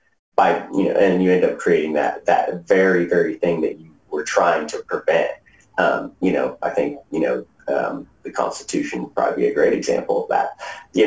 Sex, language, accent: male, English, American